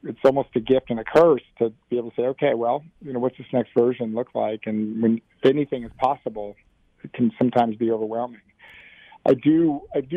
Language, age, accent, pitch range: English, 50-69, American, 115-135 Hz